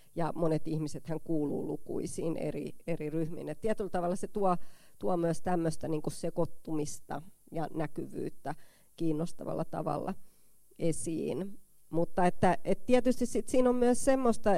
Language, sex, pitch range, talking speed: Finnish, female, 155-185 Hz, 130 wpm